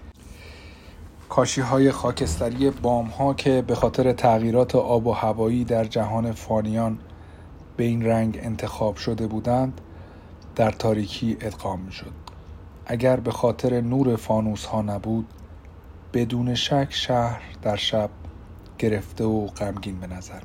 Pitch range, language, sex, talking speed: 90-120 Hz, Persian, male, 125 wpm